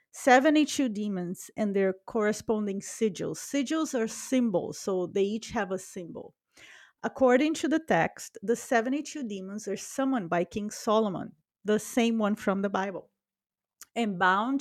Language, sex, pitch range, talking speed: English, female, 195-250 Hz, 145 wpm